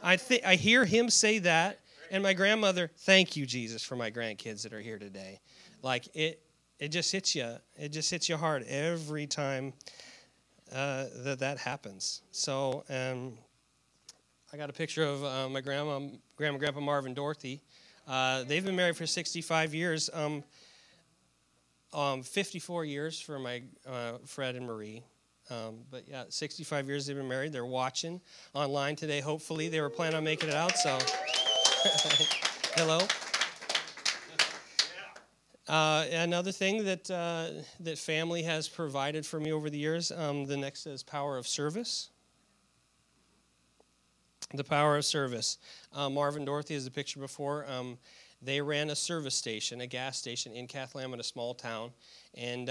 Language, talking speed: English, 155 wpm